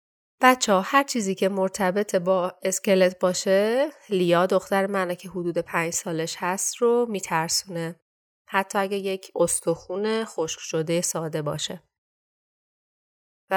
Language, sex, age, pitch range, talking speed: Persian, female, 30-49, 170-205 Hz, 120 wpm